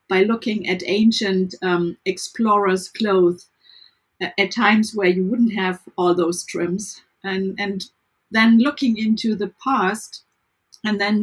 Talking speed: 140 wpm